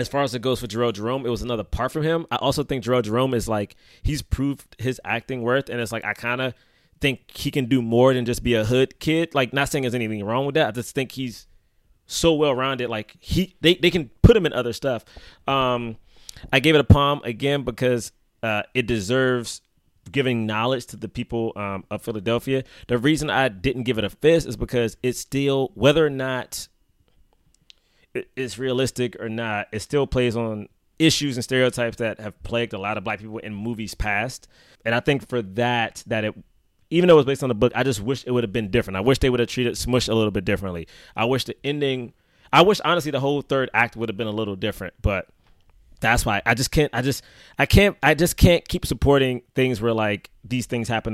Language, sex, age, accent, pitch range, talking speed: English, male, 20-39, American, 105-135 Hz, 230 wpm